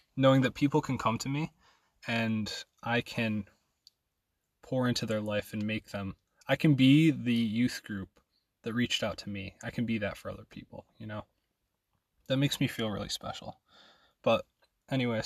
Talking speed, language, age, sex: 175 wpm, English, 20-39, male